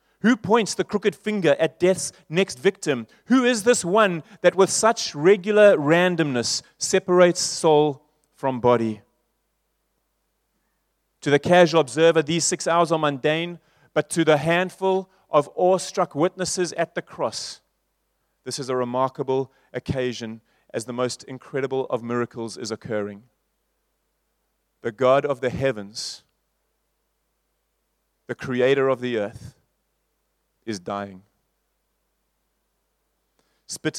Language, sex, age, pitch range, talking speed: English, male, 30-49, 130-165 Hz, 120 wpm